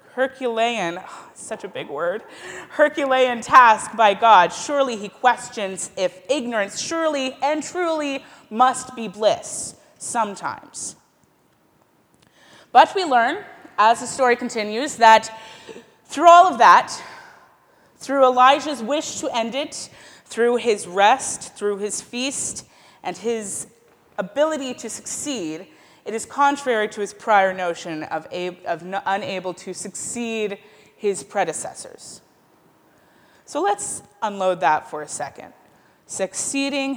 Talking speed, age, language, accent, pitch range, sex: 120 wpm, 30-49, English, American, 195-265 Hz, female